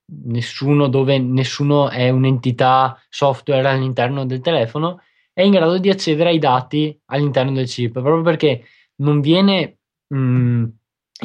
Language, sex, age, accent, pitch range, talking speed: Italian, male, 20-39, native, 130-160 Hz, 130 wpm